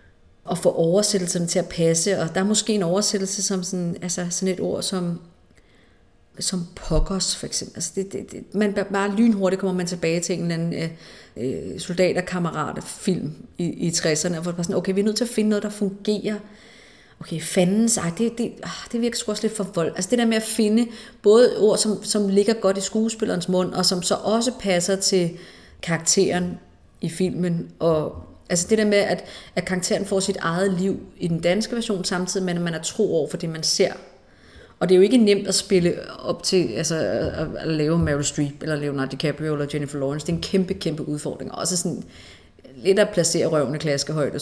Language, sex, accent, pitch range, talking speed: Danish, female, native, 165-195 Hz, 210 wpm